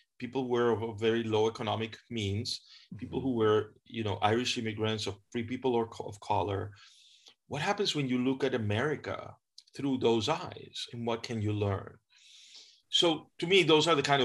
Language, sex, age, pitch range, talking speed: English, male, 30-49, 105-135 Hz, 185 wpm